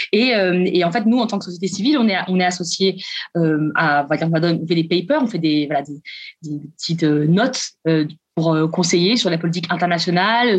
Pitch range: 170-220 Hz